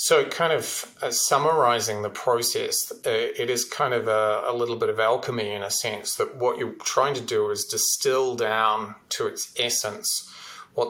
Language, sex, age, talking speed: English, male, 30-49, 185 wpm